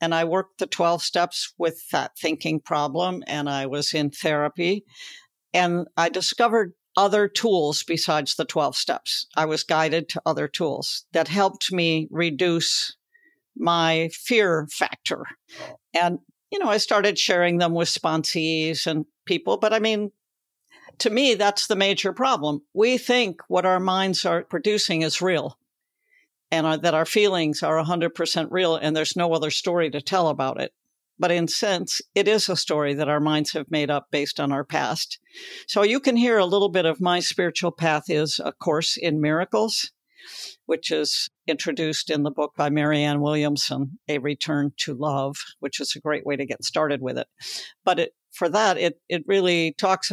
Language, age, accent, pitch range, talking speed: English, 60-79, American, 155-195 Hz, 175 wpm